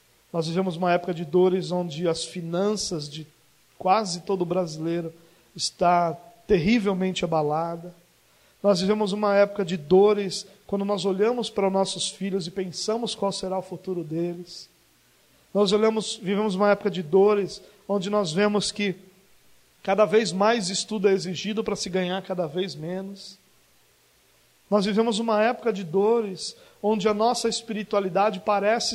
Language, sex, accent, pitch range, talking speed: Portuguese, male, Brazilian, 180-220 Hz, 145 wpm